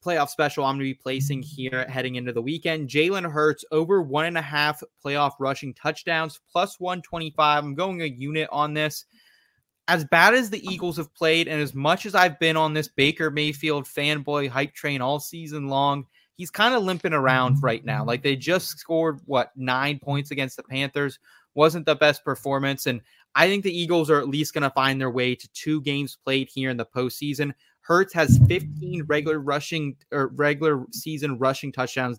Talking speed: 195 wpm